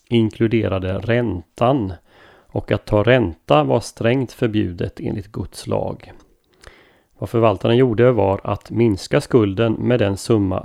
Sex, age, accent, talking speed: male, 30-49, native, 125 wpm